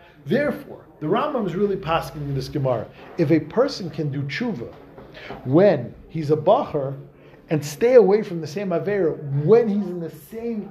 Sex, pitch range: male, 145-190 Hz